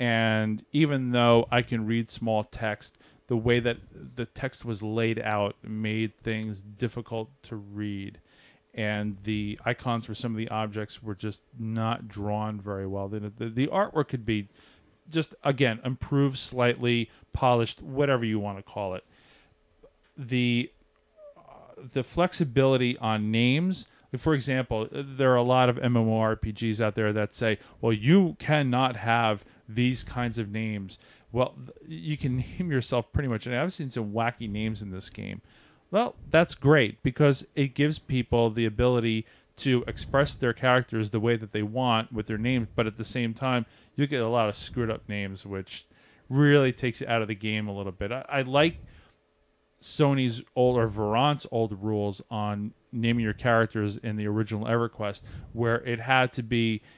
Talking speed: 170 wpm